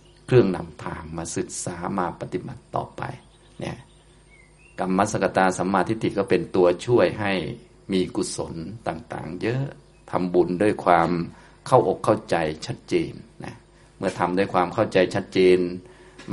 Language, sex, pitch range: Thai, male, 90-100 Hz